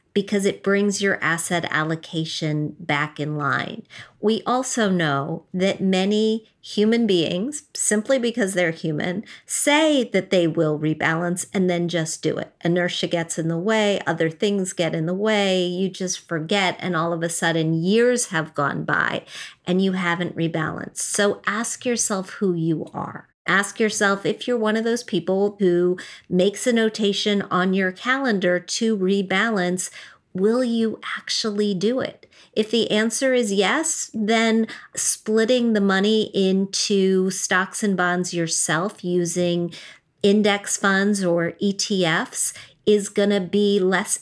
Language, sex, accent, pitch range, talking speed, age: English, female, American, 170-215 Hz, 150 wpm, 50-69